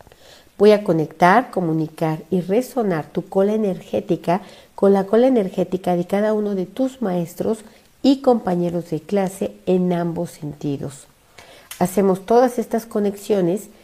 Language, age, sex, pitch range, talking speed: Spanish, 50-69, female, 170-210 Hz, 130 wpm